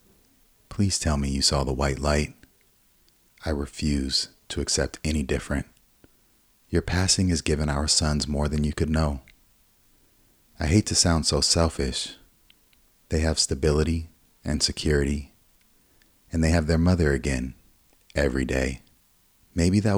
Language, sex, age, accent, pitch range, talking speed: English, male, 30-49, American, 70-85 Hz, 140 wpm